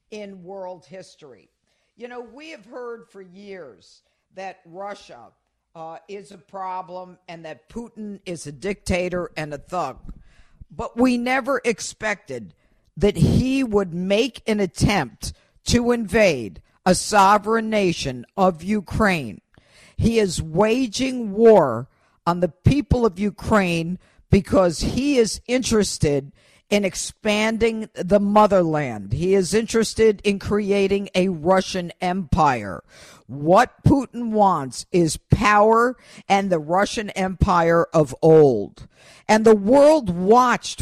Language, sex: English, female